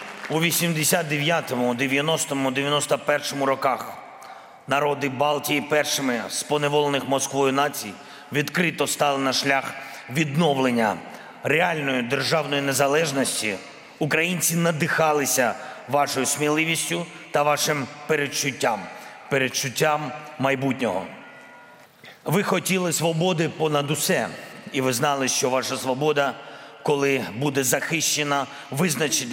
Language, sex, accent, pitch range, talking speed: Russian, male, native, 135-155 Hz, 90 wpm